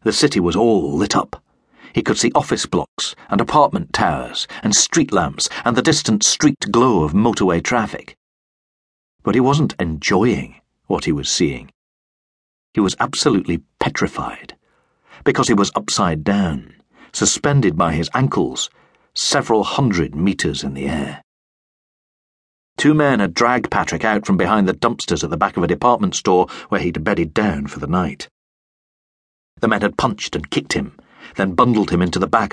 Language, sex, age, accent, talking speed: English, male, 40-59, British, 165 wpm